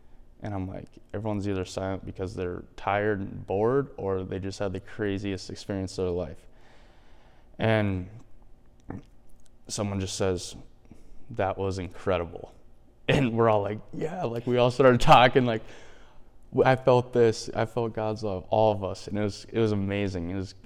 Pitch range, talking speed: 95-115 Hz, 165 wpm